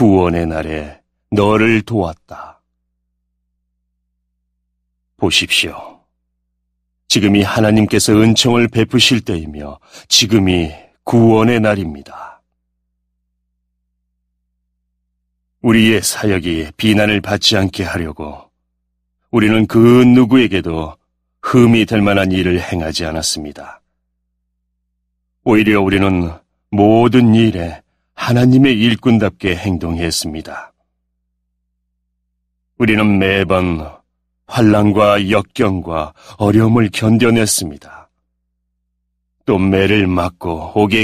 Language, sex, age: Korean, male, 40-59